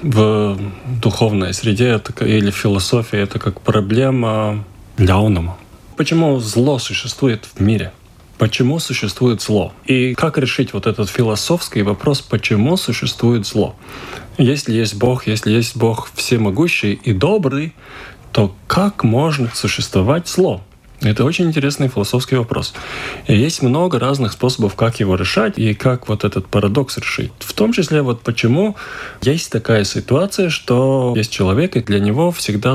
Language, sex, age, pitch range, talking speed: Russian, male, 20-39, 105-135 Hz, 140 wpm